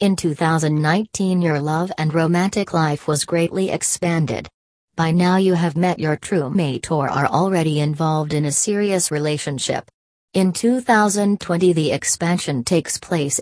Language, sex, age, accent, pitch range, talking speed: English, female, 40-59, American, 150-180 Hz, 145 wpm